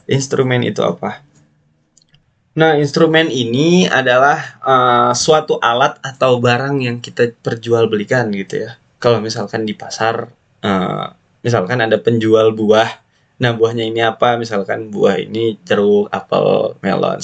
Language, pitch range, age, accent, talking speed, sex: Indonesian, 110-145 Hz, 20-39, native, 125 wpm, male